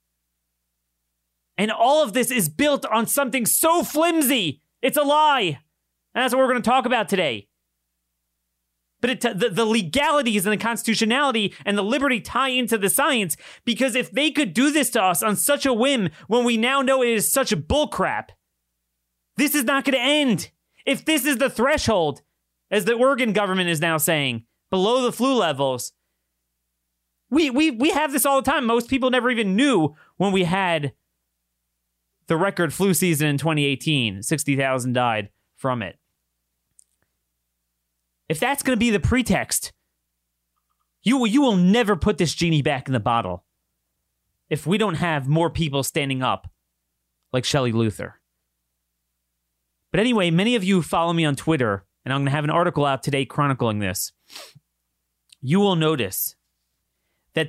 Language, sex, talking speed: English, male, 170 wpm